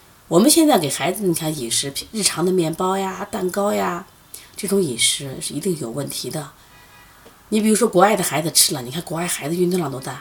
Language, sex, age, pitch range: Chinese, female, 30-49, 140-200 Hz